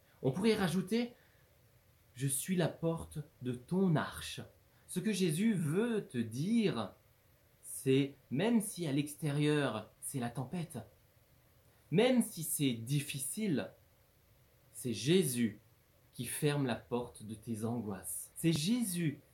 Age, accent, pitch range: 30-49, French, 115-155 Hz